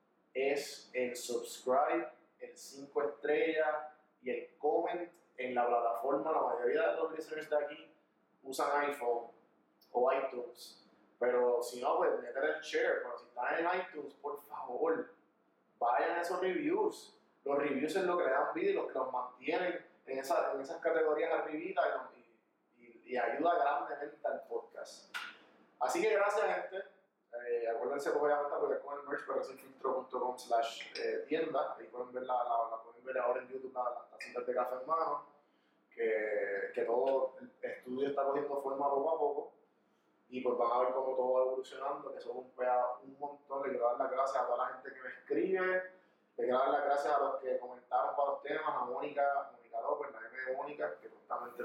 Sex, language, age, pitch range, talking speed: male, Spanish, 30-49, 125-185 Hz, 185 wpm